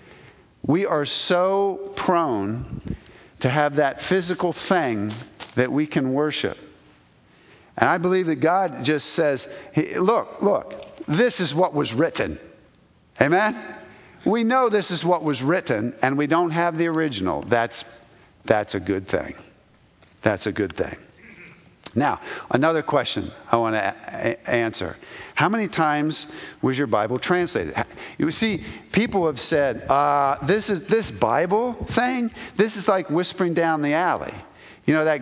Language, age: English, 50-69